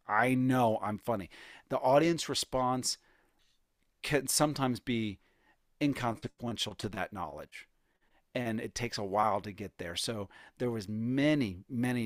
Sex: male